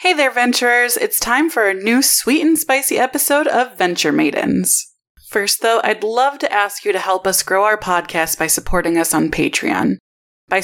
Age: 30-49